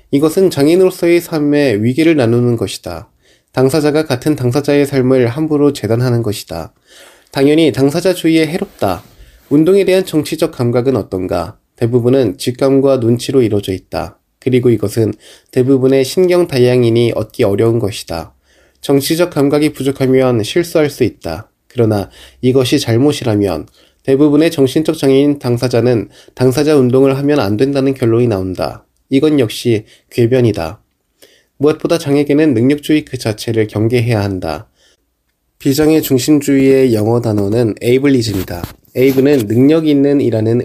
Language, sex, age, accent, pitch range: Korean, male, 20-39, native, 115-145 Hz